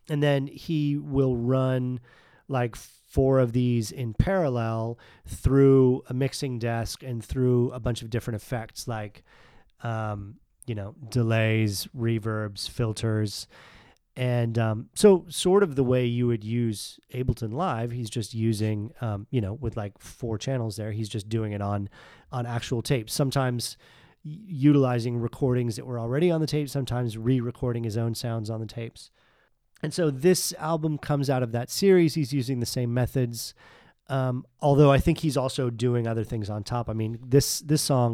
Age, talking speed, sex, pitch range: 30-49, 170 wpm, male, 115-135 Hz